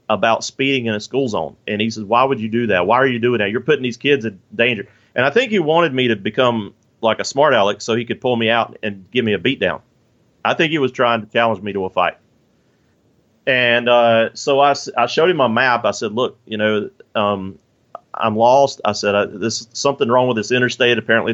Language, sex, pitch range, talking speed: English, male, 110-125 Hz, 240 wpm